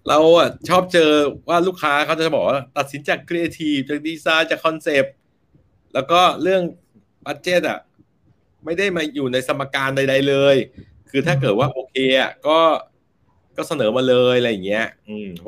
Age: 60-79